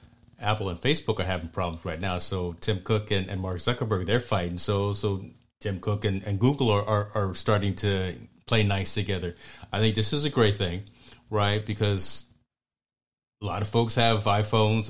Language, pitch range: English, 100-115 Hz